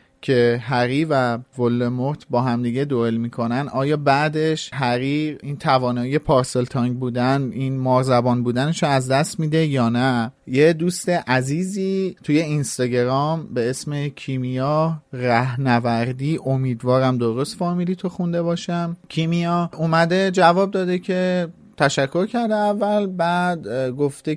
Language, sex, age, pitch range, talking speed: Persian, male, 30-49, 130-175 Hz, 135 wpm